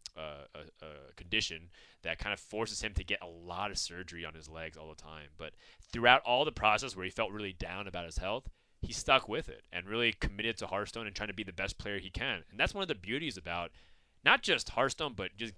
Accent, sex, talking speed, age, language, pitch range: American, male, 245 wpm, 30-49, English, 85-105 Hz